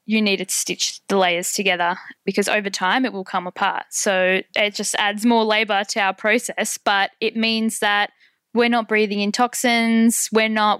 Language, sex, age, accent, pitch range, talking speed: English, female, 10-29, Australian, 195-220 Hz, 190 wpm